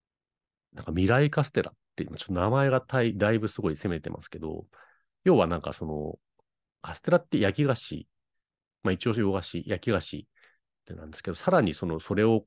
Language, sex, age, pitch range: Japanese, male, 40-59, 85-125 Hz